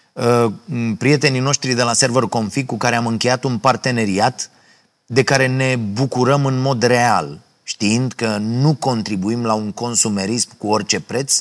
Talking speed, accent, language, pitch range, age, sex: 155 wpm, native, Romanian, 100-125 Hz, 30-49, male